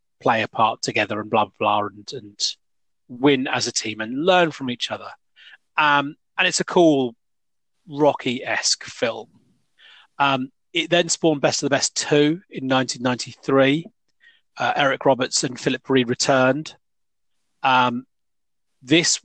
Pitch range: 115-145 Hz